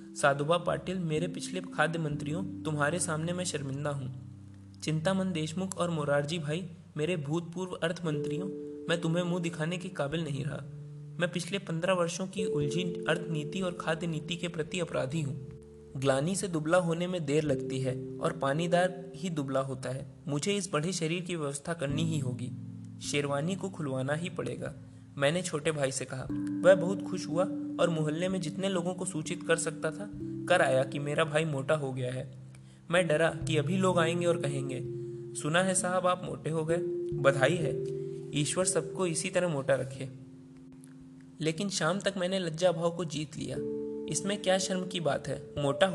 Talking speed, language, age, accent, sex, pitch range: 150 wpm, Hindi, 20-39, native, male, 135-175 Hz